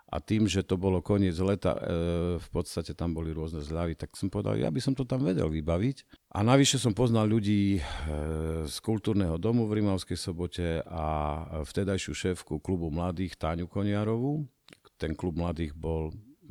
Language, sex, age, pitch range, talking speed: Slovak, male, 50-69, 80-95 Hz, 165 wpm